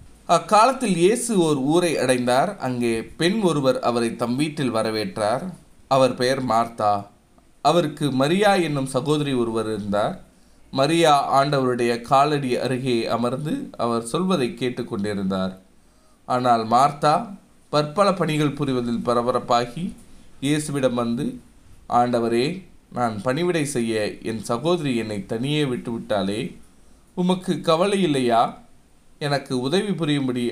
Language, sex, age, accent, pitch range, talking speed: Tamil, male, 20-39, native, 115-155 Hz, 100 wpm